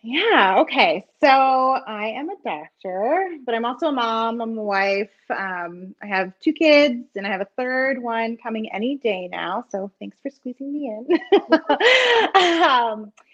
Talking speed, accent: 165 wpm, American